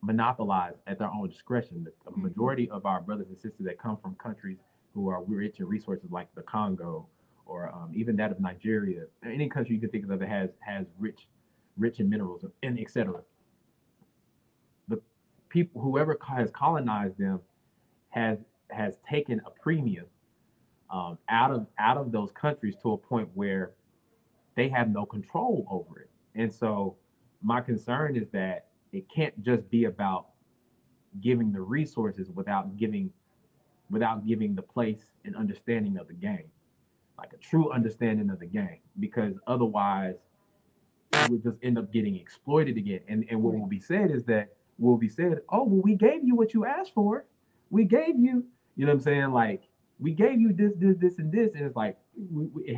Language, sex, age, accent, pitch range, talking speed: English, male, 30-49, American, 110-180 Hz, 175 wpm